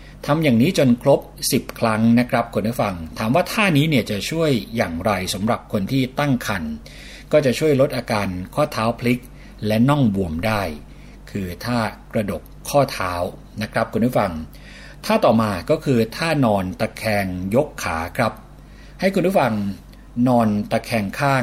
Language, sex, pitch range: Thai, male, 105-140 Hz